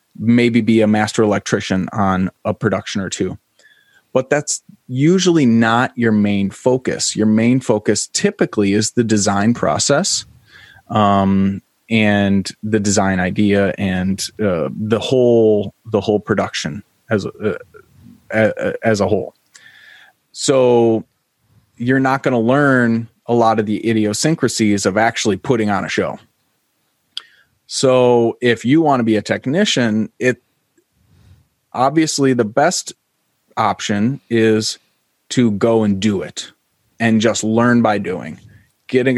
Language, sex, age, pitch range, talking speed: English, male, 30-49, 105-130 Hz, 130 wpm